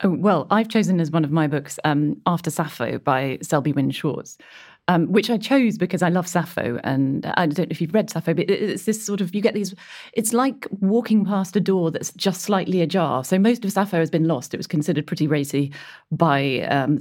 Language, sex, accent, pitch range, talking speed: English, female, British, 155-195 Hz, 220 wpm